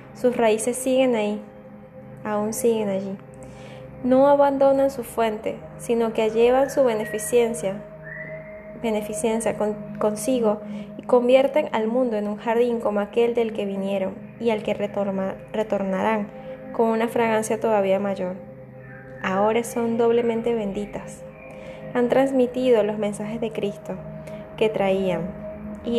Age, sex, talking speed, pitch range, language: 10-29, female, 125 wpm, 200-235 Hz, Spanish